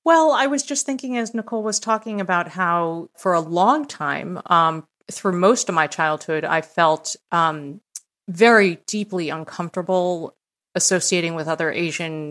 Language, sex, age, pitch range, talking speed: English, female, 30-49, 160-200 Hz, 150 wpm